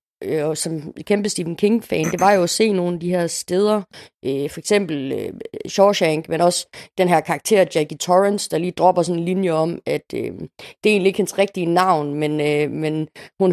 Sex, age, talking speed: female, 30-49, 215 wpm